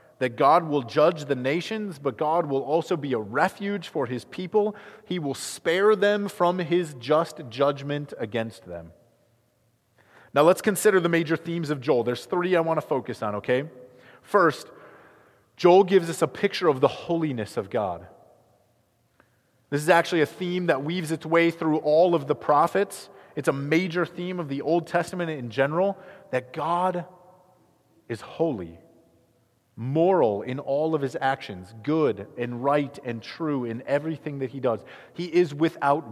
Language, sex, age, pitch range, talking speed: English, male, 30-49, 125-175 Hz, 165 wpm